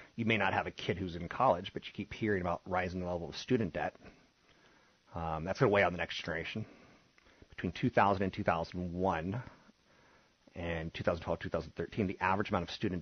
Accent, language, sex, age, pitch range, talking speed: American, English, male, 30-49, 85-100 Hz, 190 wpm